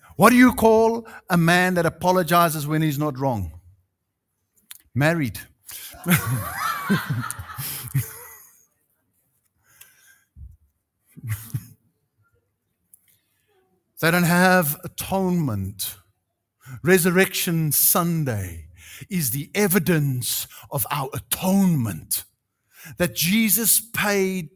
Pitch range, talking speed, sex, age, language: 110-185 Hz, 70 wpm, male, 60-79, English